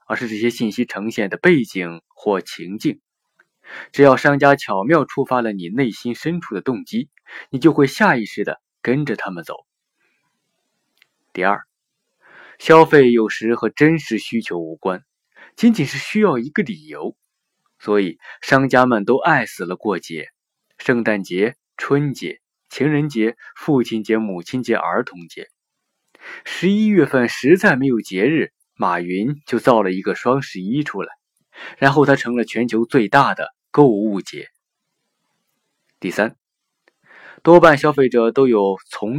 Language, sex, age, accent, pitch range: Chinese, male, 20-39, native, 105-145 Hz